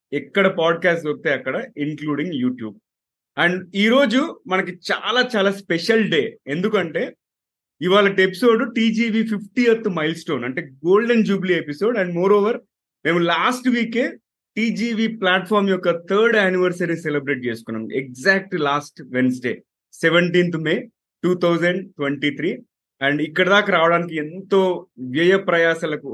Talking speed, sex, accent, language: 125 wpm, male, native, Telugu